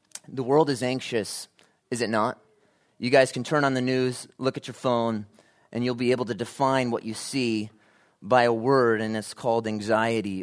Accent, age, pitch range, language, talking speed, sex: American, 30-49, 110-135 Hz, English, 195 wpm, male